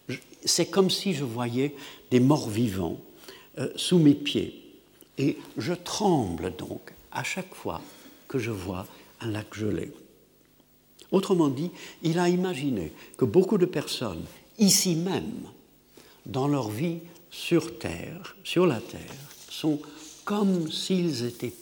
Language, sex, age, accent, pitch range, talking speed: French, male, 60-79, French, 115-175 Hz, 140 wpm